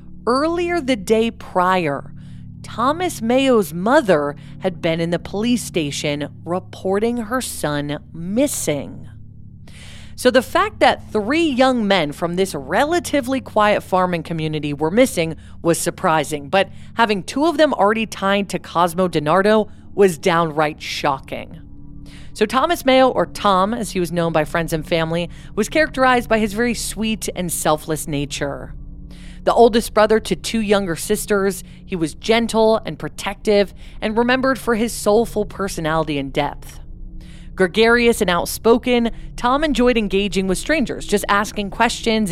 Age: 40-59